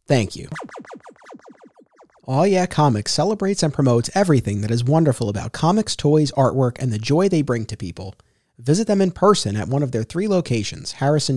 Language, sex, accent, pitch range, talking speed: English, male, American, 115-155 Hz, 180 wpm